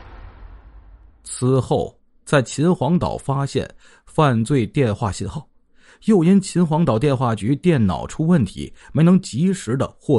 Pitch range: 105-155 Hz